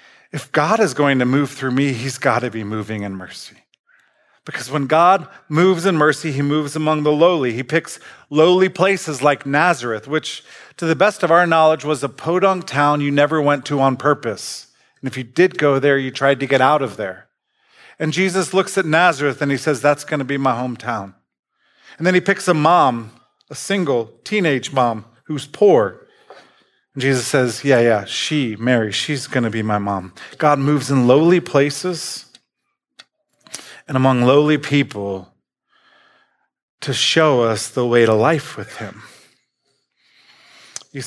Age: 40-59